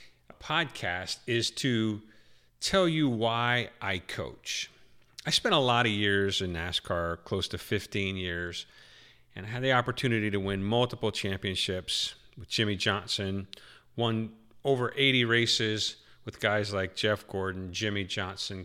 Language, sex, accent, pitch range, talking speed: English, male, American, 95-120 Hz, 140 wpm